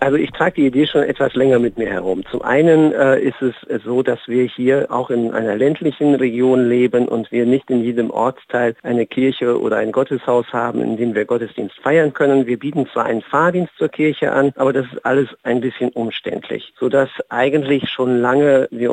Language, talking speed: German, 205 wpm